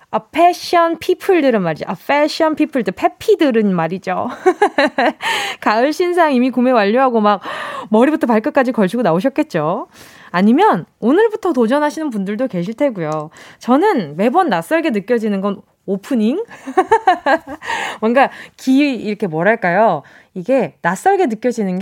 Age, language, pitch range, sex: 20-39, Korean, 200-305 Hz, female